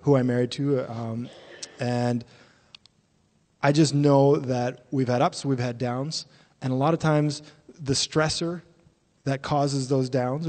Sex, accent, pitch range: male, American, 125-145 Hz